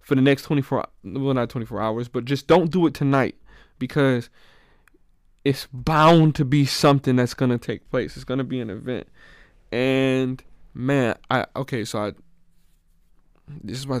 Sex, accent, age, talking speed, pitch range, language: male, American, 20-39, 170 wpm, 105-140 Hz, English